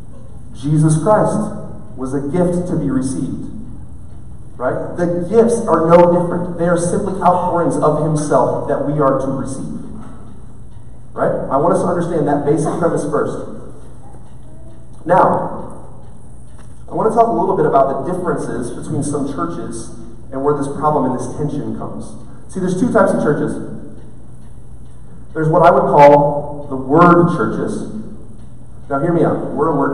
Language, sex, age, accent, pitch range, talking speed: English, male, 30-49, American, 125-170 Hz, 155 wpm